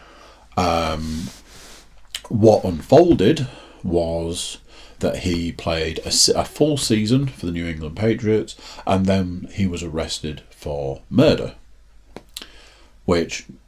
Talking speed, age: 105 wpm, 40-59